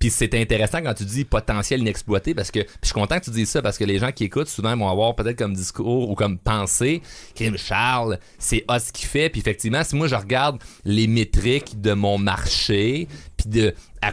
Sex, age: male, 30-49